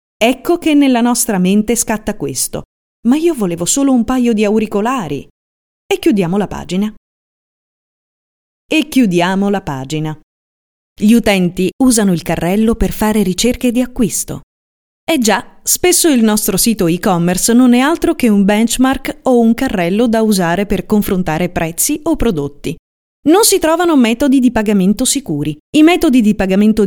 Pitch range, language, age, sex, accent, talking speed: 180-255 Hz, Italian, 30-49, female, native, 150 wpm